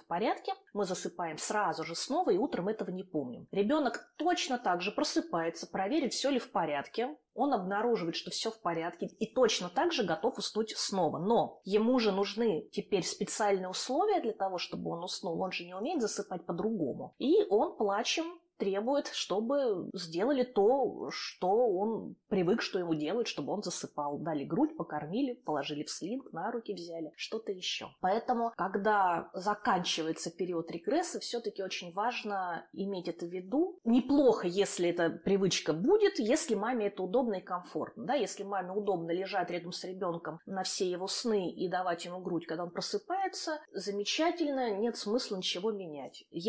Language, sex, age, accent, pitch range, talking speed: Russian, female, 20-39, native, 180-250 Hz, 165 wpm